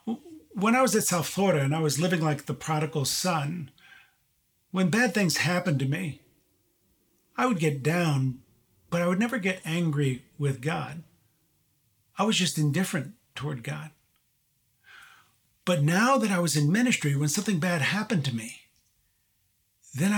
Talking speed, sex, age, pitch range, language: 155 wpm, male, 50-69, 135-195 Hz, English